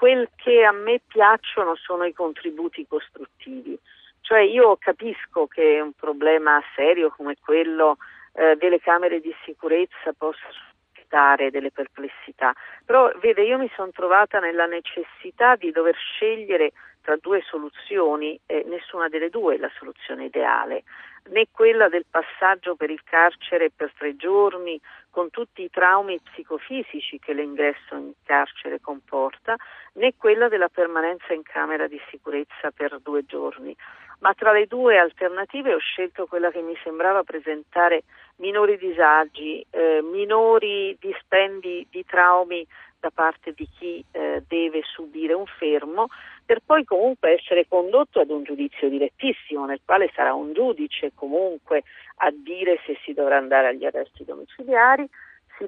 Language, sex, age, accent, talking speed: Italian, female, 40-59, native, 145 wpm